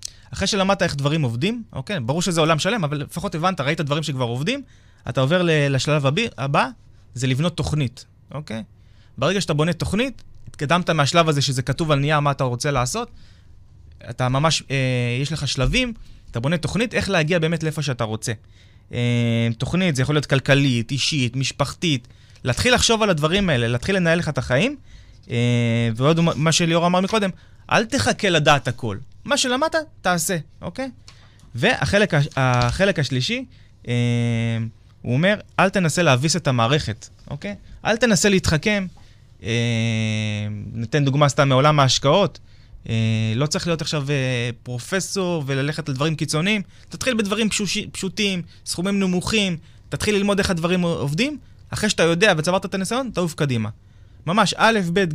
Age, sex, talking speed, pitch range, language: 20-39, male, 145 wpm, 120-180 Hz, Hebrew